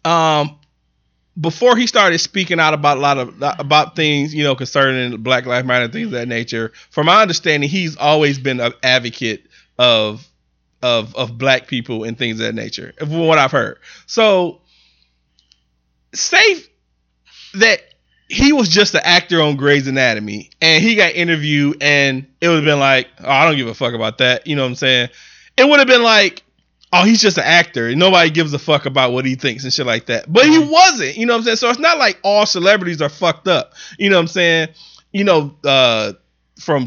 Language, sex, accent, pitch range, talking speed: English, male, American, 125-175 Hz, 205 wpm